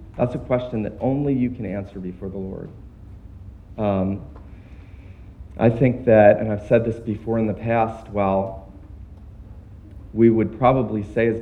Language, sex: English, male